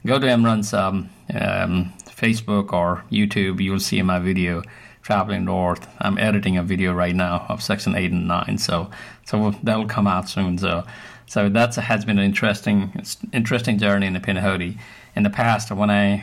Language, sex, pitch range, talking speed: English, male, 90-105 Hz, 185 wpm